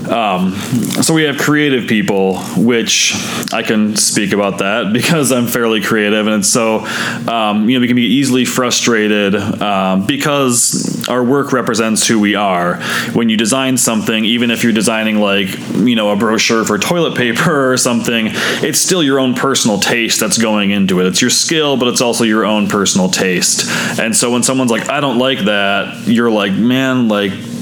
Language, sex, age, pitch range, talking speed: English, male, 20-39, 105-125 Hz, 185 wpm